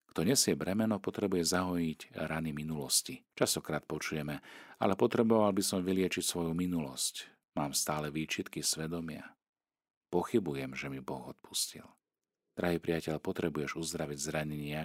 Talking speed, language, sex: 120 wpm, Slovak, male